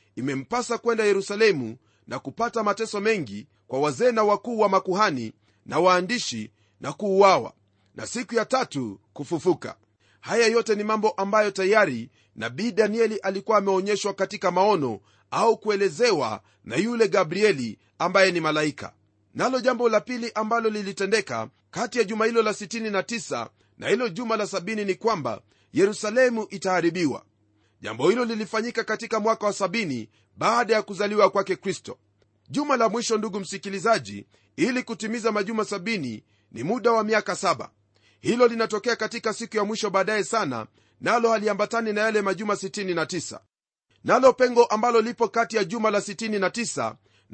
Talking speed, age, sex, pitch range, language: 145 wpm, 40-59, male, 150-225 Hz, Swahili